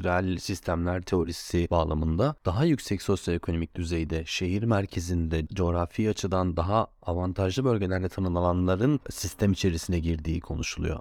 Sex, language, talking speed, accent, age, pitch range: male, Turkish, 105 wpm, native, 30-49, 90-110 Hz